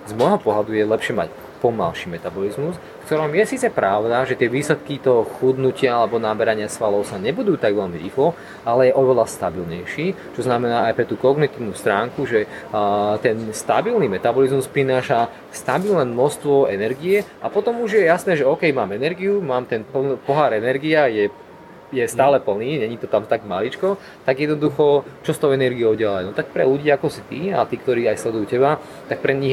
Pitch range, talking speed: 120-145 Hz, 185 wpm